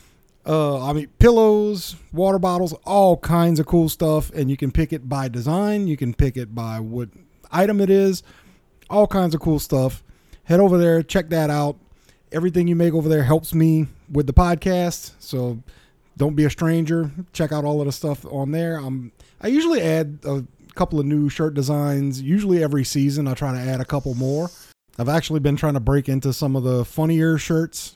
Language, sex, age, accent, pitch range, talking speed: English, male, 30-49, American, 140-175 Hz, 195 wpm